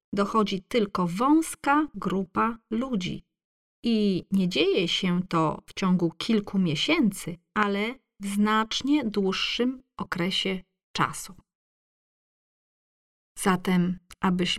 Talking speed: 90 wpm